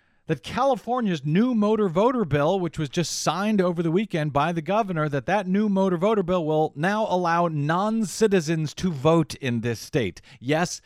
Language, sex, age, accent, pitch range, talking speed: English, male, 40-59, American, 125-180 Hz, 175 wpm